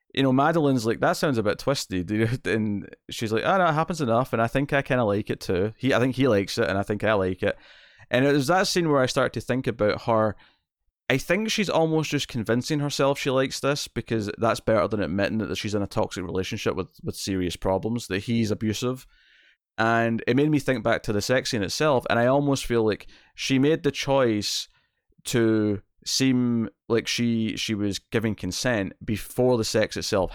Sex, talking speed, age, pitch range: male, 220 wpm, 20-39, 105-130 Hz